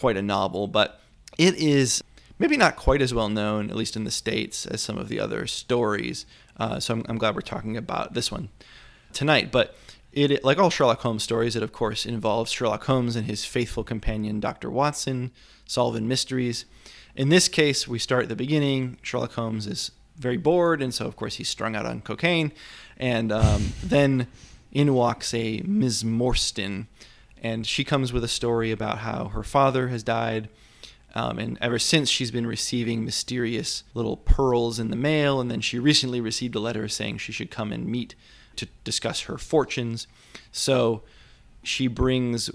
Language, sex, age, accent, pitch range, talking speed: English, male, 20-39, American, 110-130 Hz, 185 wpm